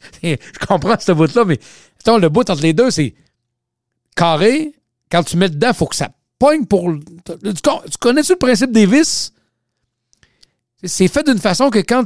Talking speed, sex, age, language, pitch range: 170 wpm, male, 50-69, French, 130-215 Hz